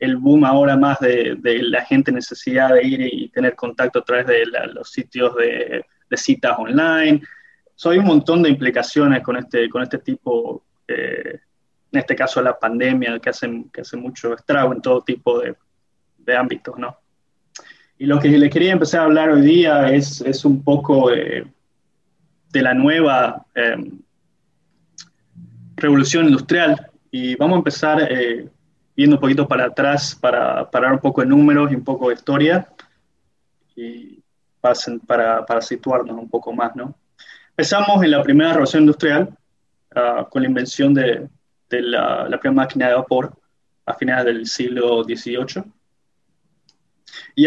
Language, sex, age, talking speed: Spanish, male, 20-39, 165 wpm